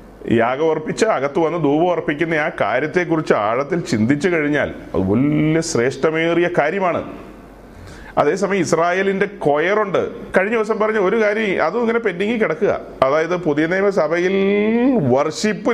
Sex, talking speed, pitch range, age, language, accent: male, 115 wpm, 160-215 Hz, 30-49, Malayalam, native